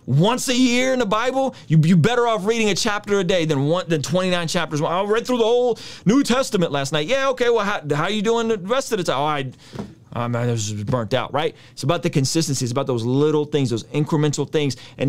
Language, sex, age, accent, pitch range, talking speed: English, male, 30-49, American, 130-185 Hz, 250 wpm